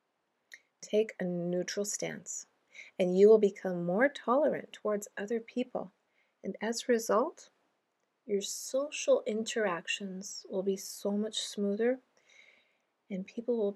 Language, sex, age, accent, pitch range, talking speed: English, female, 40-59, American, 190-225 Hz, 120 wpm